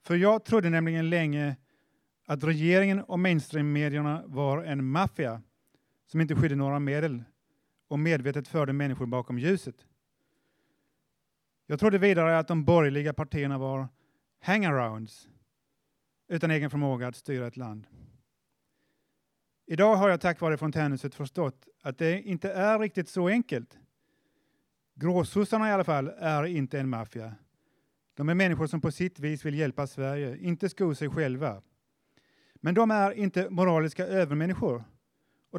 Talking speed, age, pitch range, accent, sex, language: 140 wpm, 30-49, 140-170 Hz, native, male, Swedish